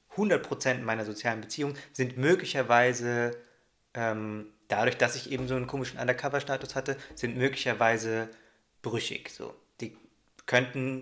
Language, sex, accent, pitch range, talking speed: German, male, German, 110-130 Hz, 120 wpm